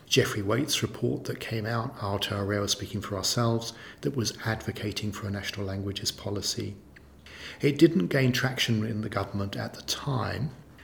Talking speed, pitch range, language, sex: 155 wpm, 100-125 Hz, English, male